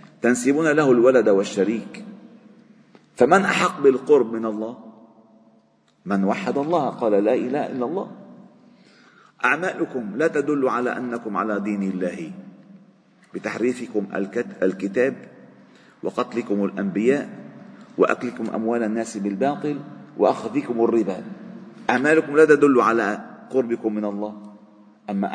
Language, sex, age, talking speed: Arabic, male, 50-69, 100 wpm